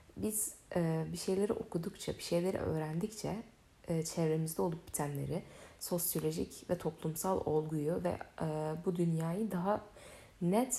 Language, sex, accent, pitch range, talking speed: Turkish, female, native, 155-195 Hz, 120 wpm